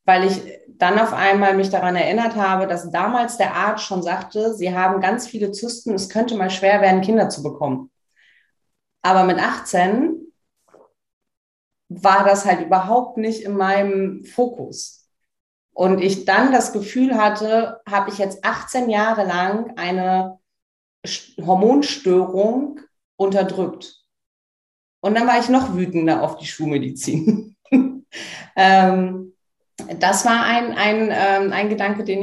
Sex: female